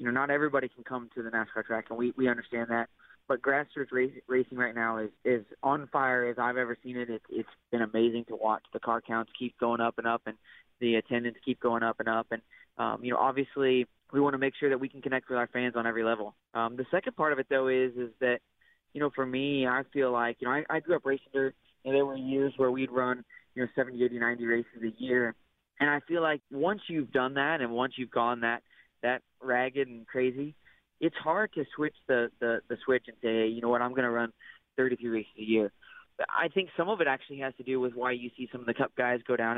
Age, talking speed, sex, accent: 20-39, 255 wpm, male, American